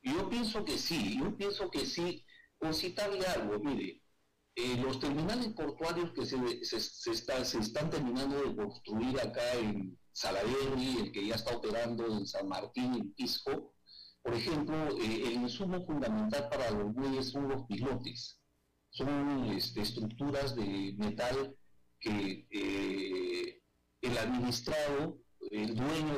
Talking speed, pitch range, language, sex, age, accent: 145 wpm, 105-170 Hz, Spanish, male, 50-69, Mexican